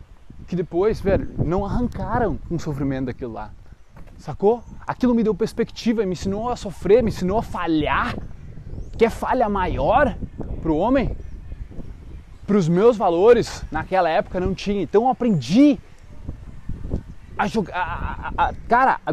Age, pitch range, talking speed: 20-39, 155-230 Hz, 140 wpm